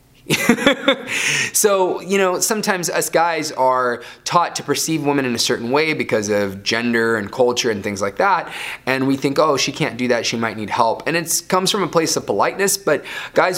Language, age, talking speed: English, 20-39, 205 wpm